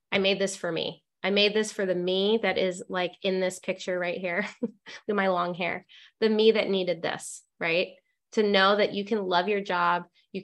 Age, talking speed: 20-39, 220 wpm